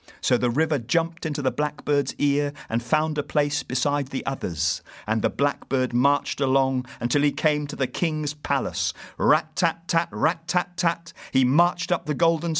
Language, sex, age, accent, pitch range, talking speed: English, male, 50-69, British, 115-165 Hz, 160 wpm